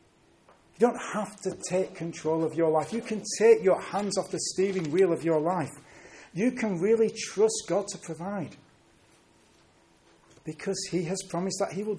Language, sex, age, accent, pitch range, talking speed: English, male, 40-59, British, 155-200 Hz, 175 wpm